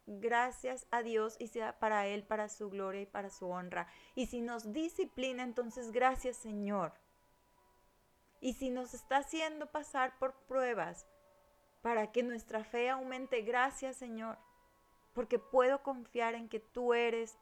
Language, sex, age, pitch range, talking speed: Spanish, female, 30-49, 190-235 Hz, 150 wpm